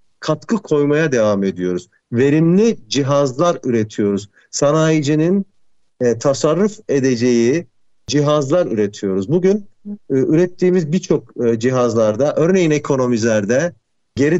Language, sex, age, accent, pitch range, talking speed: Turkish, male, 50-69, native, 135-190 Hz, 90 wpm